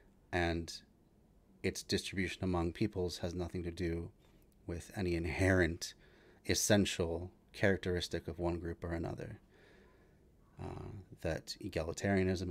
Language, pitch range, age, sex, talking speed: English, 85-105 Hz, 30-49, male, 105 wpm